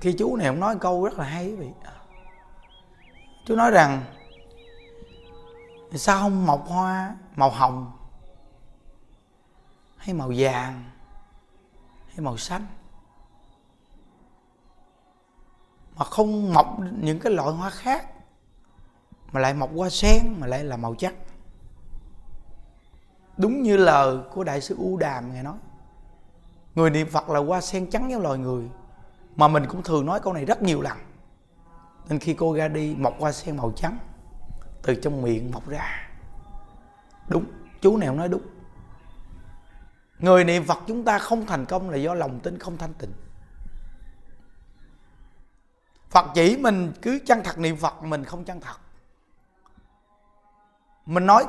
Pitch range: 130-195 Hz